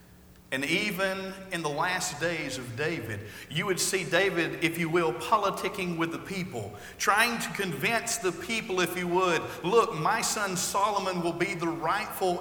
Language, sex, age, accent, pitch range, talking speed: English, male, 50-69, American, 130-180 Hz, 170 wpm